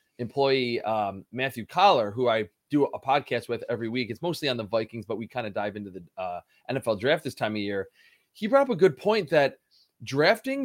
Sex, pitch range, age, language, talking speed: male, 120-150 Hz, 20-39, English, 220 wpm